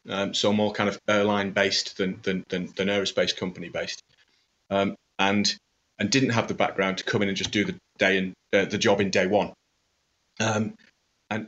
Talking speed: 195 wpm